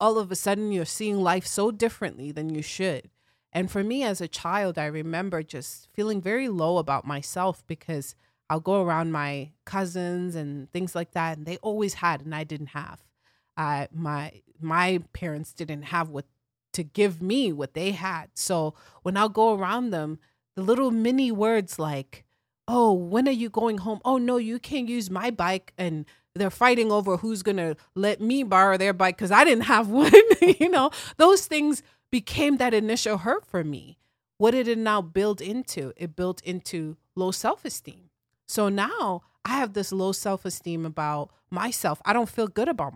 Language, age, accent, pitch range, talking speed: English, 30-49, American, 160-215 Hz, 185 wpm